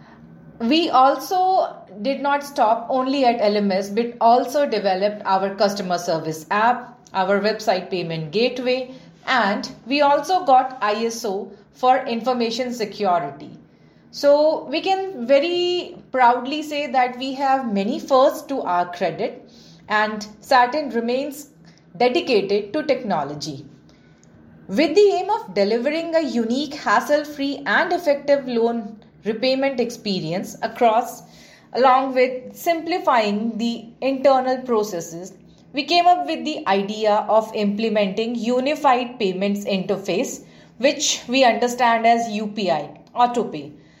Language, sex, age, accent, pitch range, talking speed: English, female, 30-49, Indian, 205-275 Hz, 115 wpm